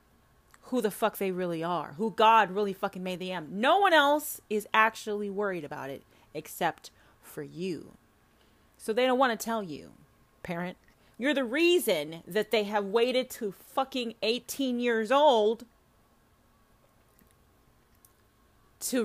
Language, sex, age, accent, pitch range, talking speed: English, female, 30-49, American, 165-225 Hz, 140 wpm